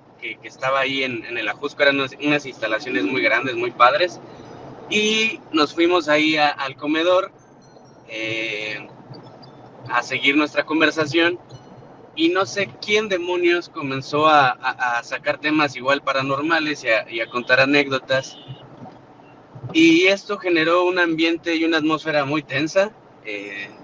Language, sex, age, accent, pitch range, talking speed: Spanish, male, 20-39, Mexican, 130-165 Hz, 145 wpm